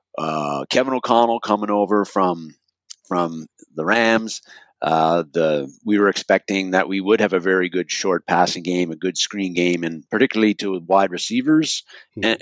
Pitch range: 90-110 Hz